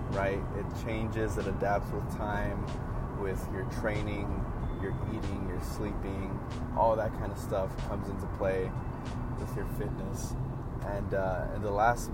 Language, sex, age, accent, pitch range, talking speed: English, male, 20-39, American, 105-125 Hz, 150 wpm